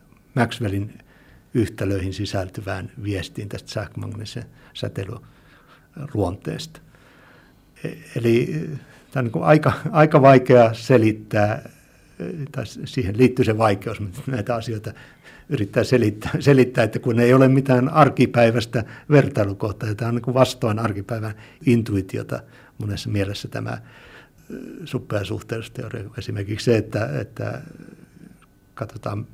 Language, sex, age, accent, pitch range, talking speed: Finnish, male, 60-79, native, 100-125 Hz, 105 wpm